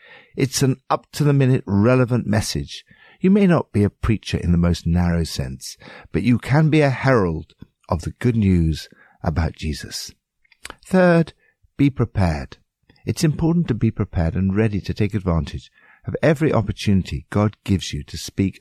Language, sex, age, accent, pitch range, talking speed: English, male, 60-79, British, 90-140 Hz, 160 wpm